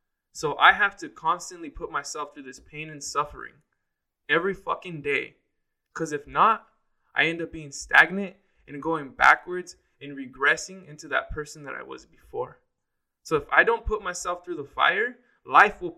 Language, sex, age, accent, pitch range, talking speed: English, male, 20-39, American, 155-220 Hz, 175 wpm